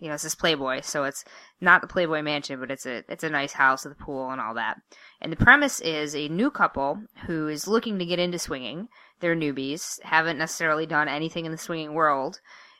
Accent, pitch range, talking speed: American, 150-175 Hz, 225 wpm